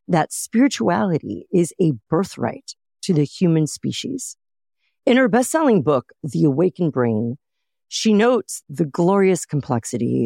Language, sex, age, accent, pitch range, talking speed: English, female, 40-59, American, 130-195 Hz, 125 wpm